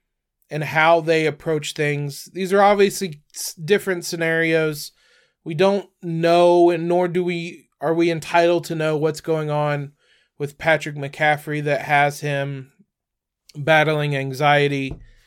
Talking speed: 130 wpm